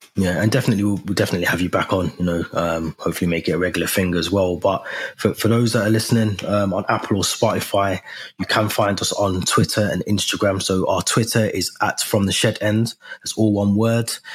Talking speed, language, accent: 220 wpm, English, British